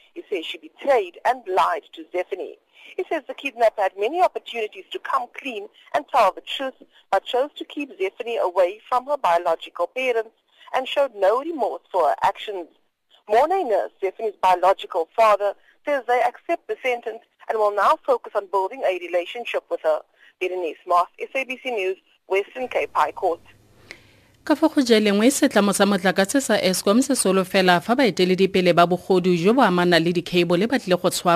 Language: English